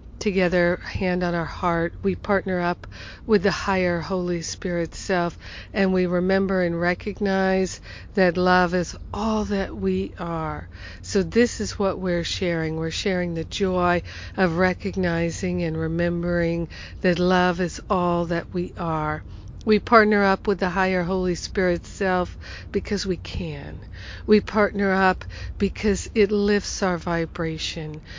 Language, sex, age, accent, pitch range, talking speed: English, female, 60-79, American, 165-195 Hz, 145 wpm